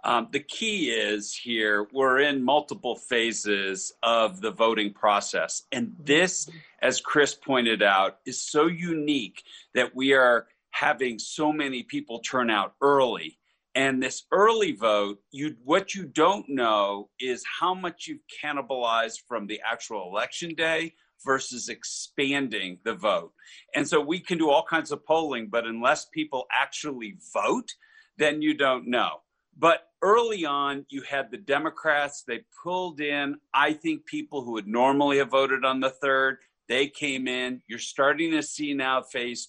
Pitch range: 125-160 Hz